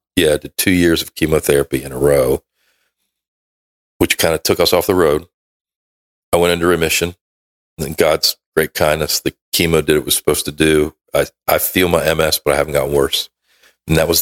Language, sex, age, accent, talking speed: English, male, 40-59, American, 205 wpm